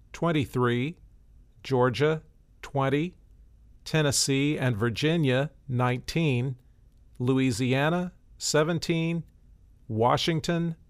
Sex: male